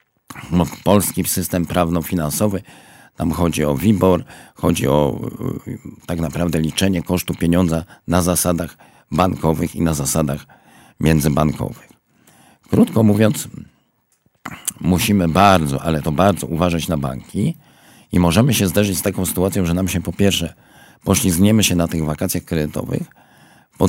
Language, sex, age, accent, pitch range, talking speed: Polish, male, 50-69, native, 80-100 Hz, 125 wpm